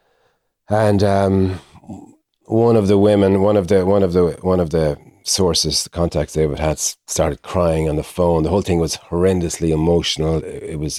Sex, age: male, 40-59